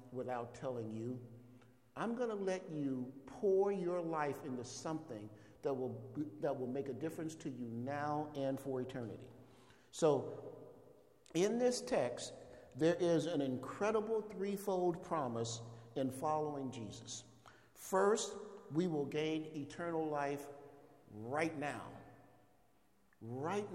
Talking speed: 120 wpm